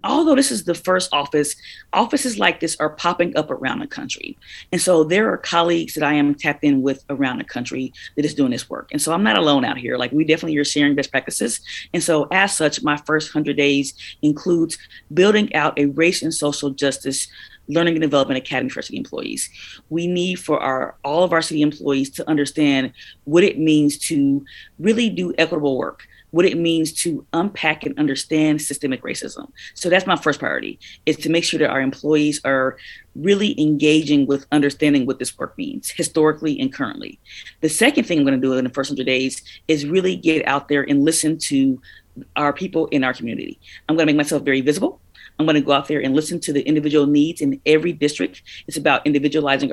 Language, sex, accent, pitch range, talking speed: English, female, American, 140-165 Hz, 205 wpm